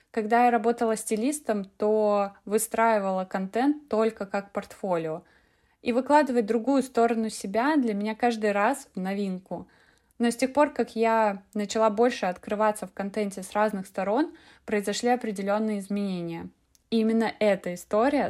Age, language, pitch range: 20-39, Russian, 195-235 Hz